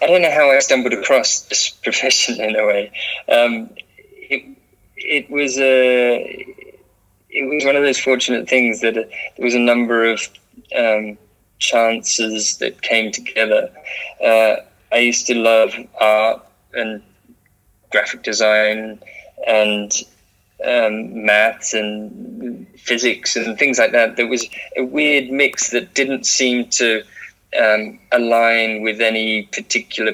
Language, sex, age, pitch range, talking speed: English, male, 20-39, 110-125 Hz, 135 wpm